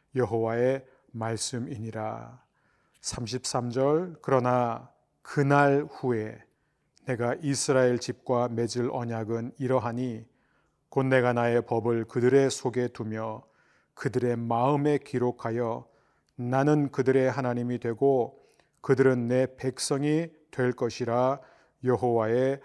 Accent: native